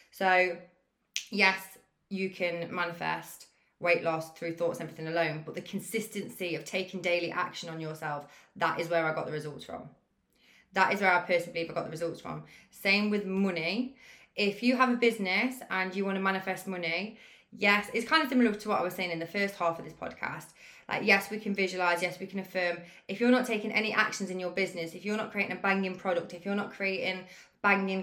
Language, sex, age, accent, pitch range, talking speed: English, female, 20-39, British, 175-220 Hz, 215 wpm